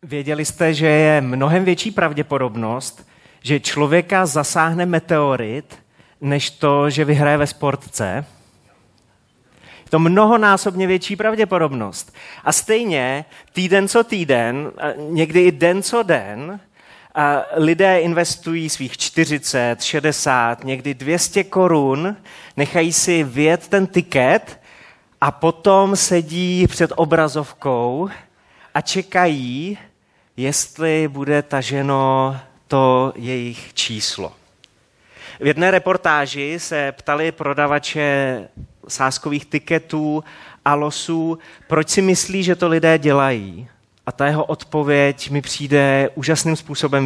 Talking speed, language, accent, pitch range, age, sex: 105 wpm, Czech, native, 130-165 Hz, 30-49, male